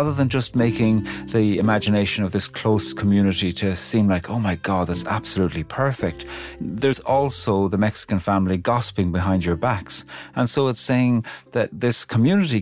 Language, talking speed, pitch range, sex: English, 160 wpm, 95-120 Hz, male